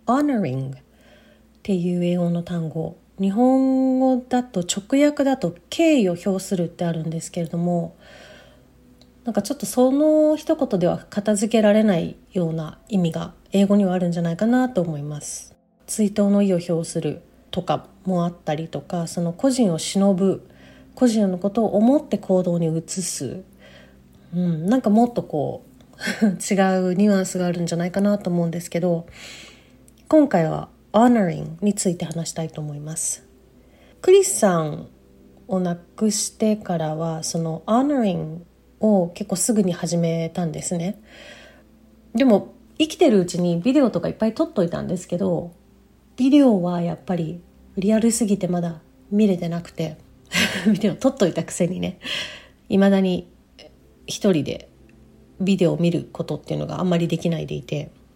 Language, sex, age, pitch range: English, female, 30-49, 170-215 Hz